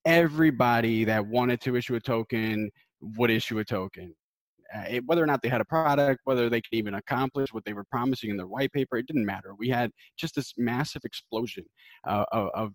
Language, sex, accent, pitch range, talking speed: English, male, American, 110-135 Hz, 205 wpm